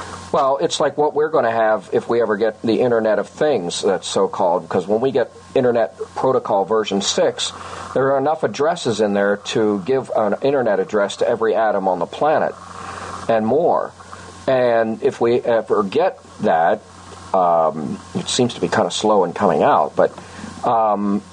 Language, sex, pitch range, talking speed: English, male, 100-140 Hz, 185 wpm